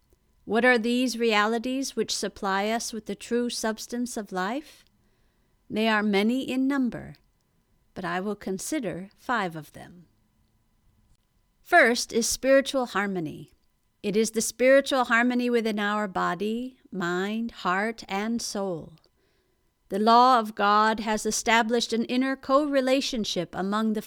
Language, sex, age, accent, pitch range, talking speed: English, female, 50-69, American, 195-250 Hz, 130 wpm